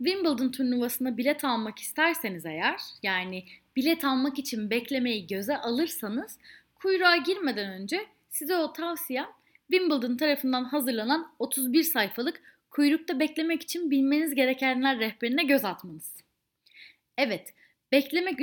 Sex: female